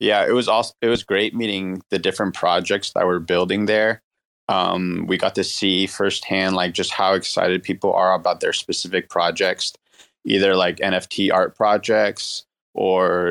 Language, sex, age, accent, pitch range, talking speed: English, male, 20-39, American, 90-105 Hz, 165 wpm